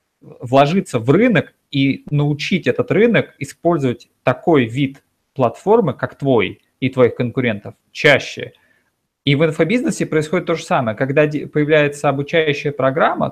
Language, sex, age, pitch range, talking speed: Russian, male, 30-49, 125-155 Hz, 125 wpm